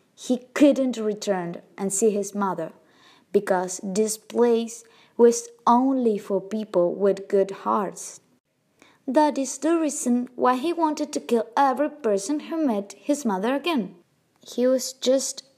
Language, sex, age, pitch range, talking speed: English, female, 20-39, 195-265 Hz, 140 wpm